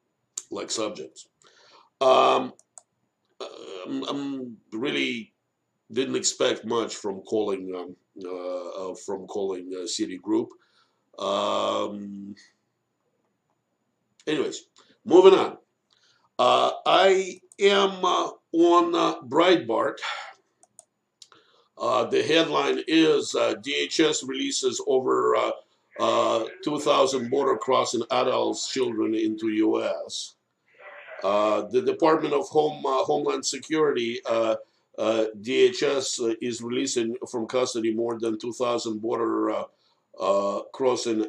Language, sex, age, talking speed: English, male, 50-69, 95 wpm